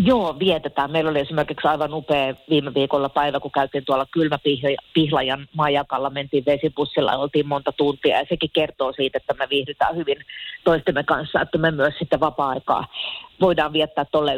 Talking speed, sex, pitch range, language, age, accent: 160 wpm, female, 145-185 Hz, Finnish, 40-59, native